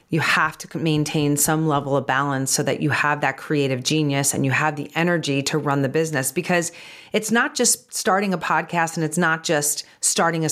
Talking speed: 210 wpm